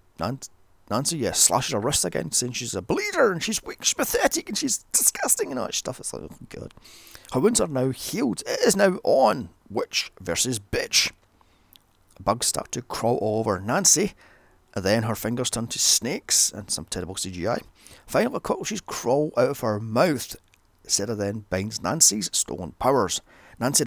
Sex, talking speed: male, 175 wpm